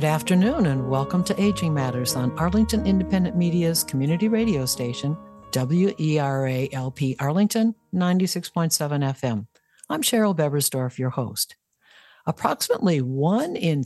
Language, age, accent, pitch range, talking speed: English, 60-79, American, 140-200 Hz, 115 wpm